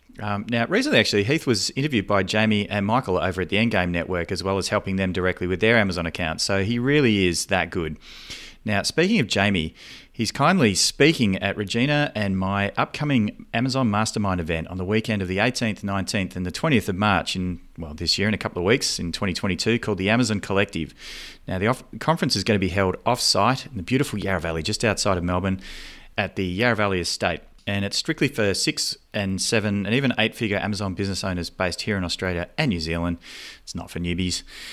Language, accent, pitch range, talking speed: English, Australian, 95-115 Hz, 210 wpm